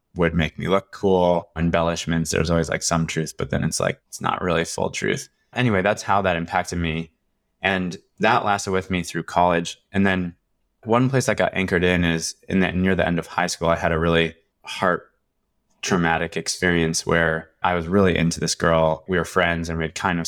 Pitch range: 80-90 Hz